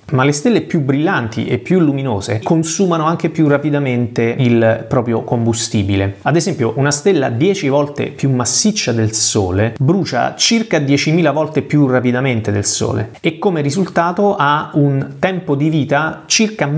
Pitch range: 110-145 Hz